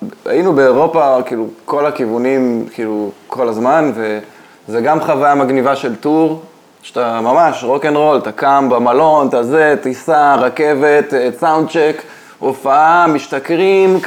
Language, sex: Hebrew, male